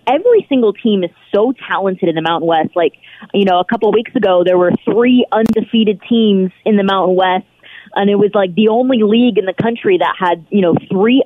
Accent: American